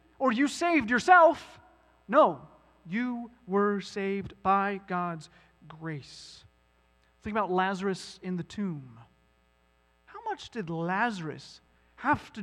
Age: 30-49